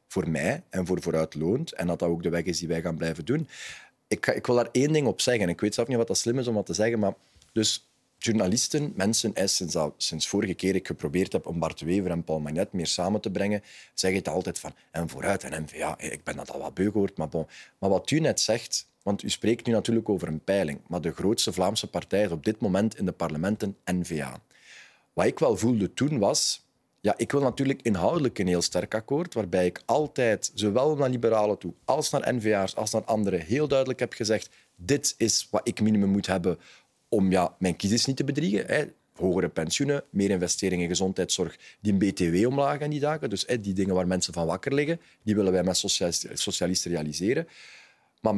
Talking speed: 225 wpm